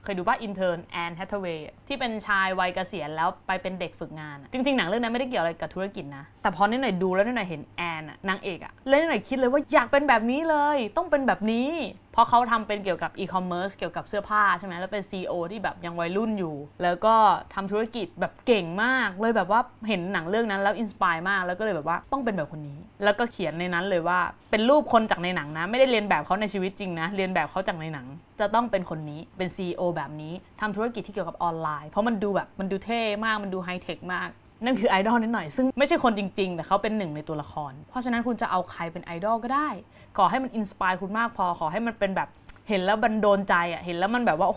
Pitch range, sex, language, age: 175-230 Hz, female, Thai, 20-39